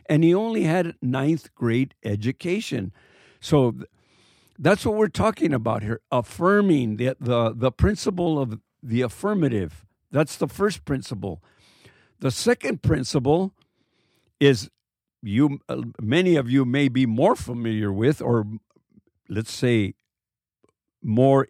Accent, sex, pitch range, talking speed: American, male, 120-170 Hz, 125 wpm